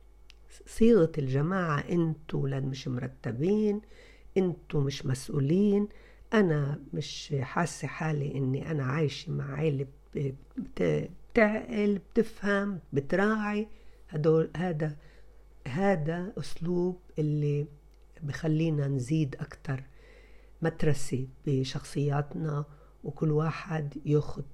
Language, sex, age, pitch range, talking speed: Arabic, female, 50-69, 145-190 Hz, 85 wpm